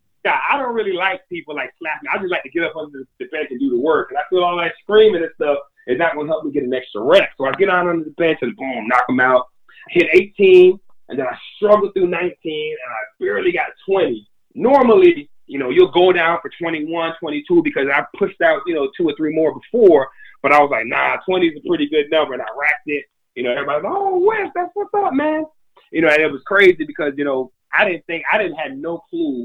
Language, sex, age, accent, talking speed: English, male, 30-49, American, 260 wpm